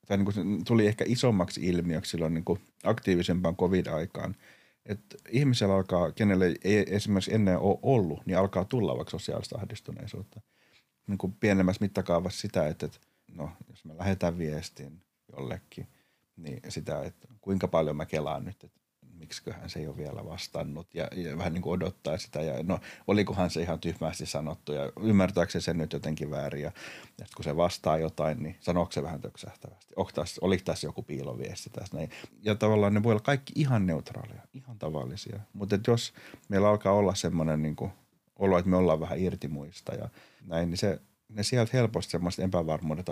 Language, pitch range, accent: Finnish, 80-105 Hz, native